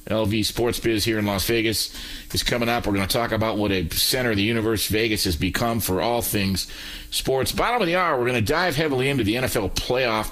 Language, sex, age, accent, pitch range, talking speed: English, male, 40-59, American, 95-120 Hz, 240 wpm